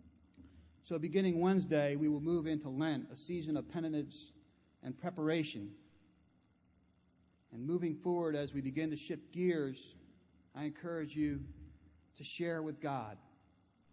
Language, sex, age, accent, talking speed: English, male, 40-59, American, 130 wpm